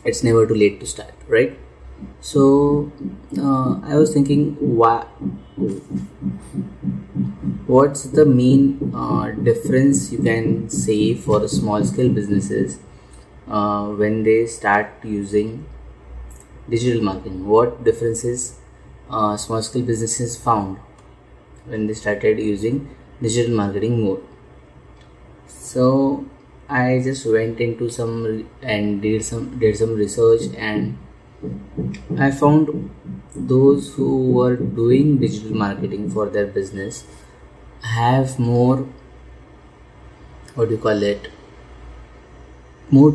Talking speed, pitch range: 110 wpm, 100-125 Hz